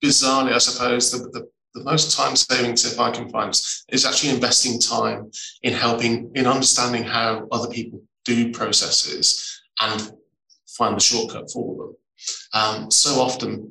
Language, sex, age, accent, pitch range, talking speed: English, male, 20-39, British, 115-145 Hz, 150 wpm